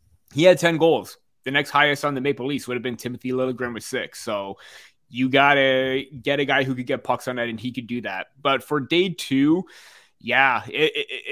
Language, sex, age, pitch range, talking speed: English, male, 20-39, 120-145 Hz, 230 wpm